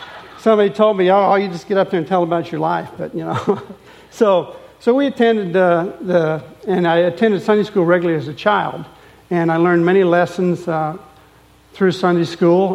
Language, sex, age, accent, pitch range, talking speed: English, male, 60-79, American, 160-185 Hz, 195 wpm